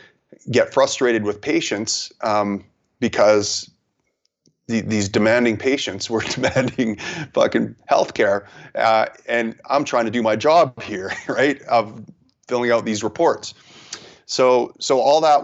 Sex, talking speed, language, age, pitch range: male, 130 wpm, English, 30-49, 100-115 Hz